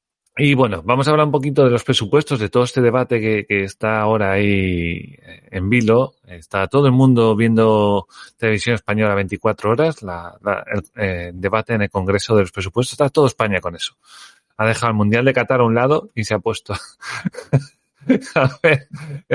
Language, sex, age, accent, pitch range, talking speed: Spanish, male, 30-49, Spanish, 105-140 Hz, 185 wpm